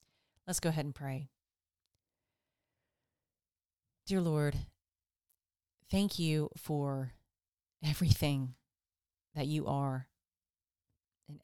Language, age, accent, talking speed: English, 40-59, American, 80 wpm